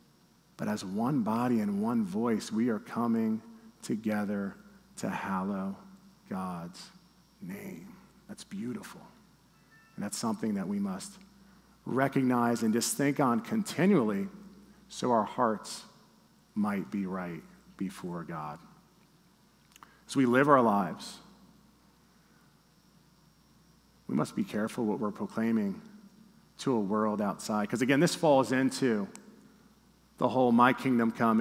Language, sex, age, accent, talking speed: English, male, 40-59, American, 120 wpm